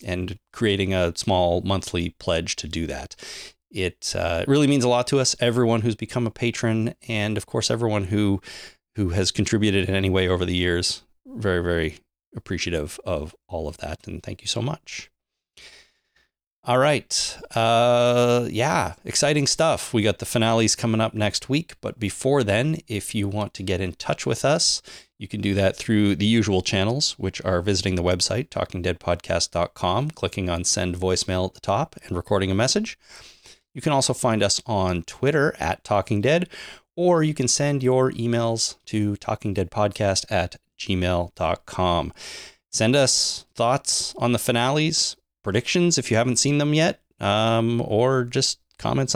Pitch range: 95-120 Hz